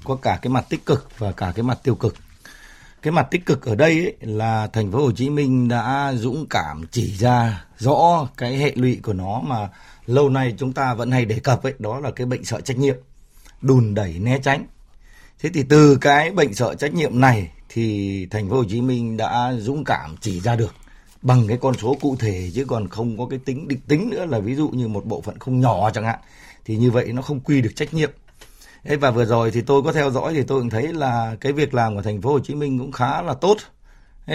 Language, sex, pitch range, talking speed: Vietnamese, male, 115-140 Hz, 245 wpm